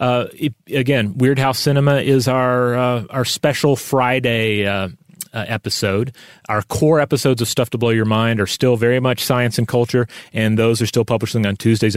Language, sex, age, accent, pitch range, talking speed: English, male, 30-49, American, 105-125 Hz, 190 wpm